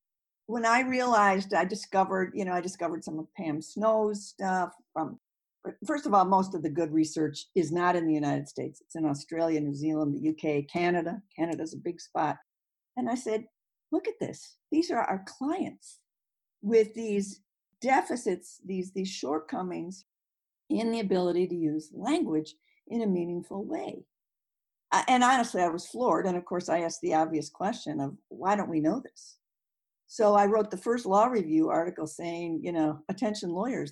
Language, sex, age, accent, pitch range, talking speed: English, female, 50-69, American, 165-215 Hz, 175 wpm